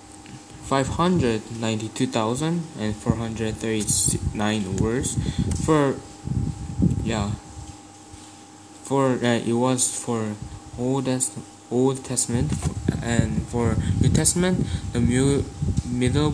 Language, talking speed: English, 105 wpm